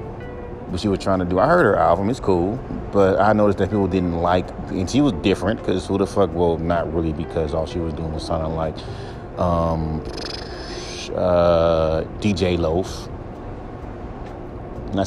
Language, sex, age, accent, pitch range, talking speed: English, male, 30-49, American, 85-105 Hz, 170 wpm